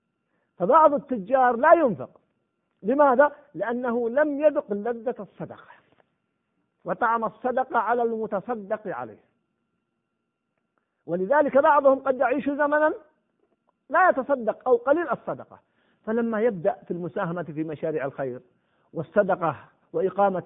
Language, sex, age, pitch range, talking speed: Arabic, male, 50-69, 180-250 Hz, 100 wpm